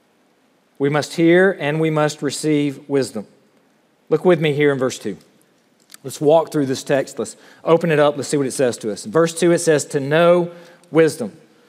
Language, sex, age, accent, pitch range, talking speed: English, male, 40-59, American, 165-210 Hz, 195 wpm